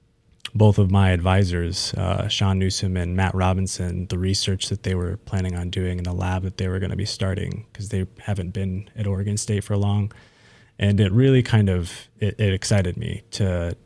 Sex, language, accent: male, English, American